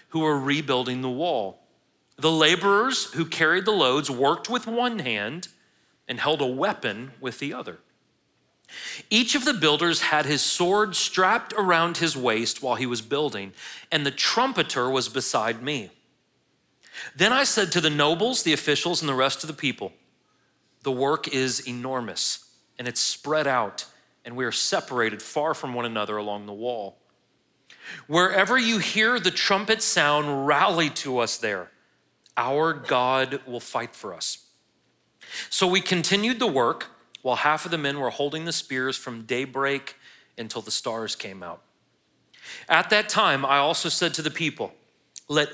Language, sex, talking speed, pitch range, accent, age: English, male, 160 wpm, 130-185 Hz, American, 40-59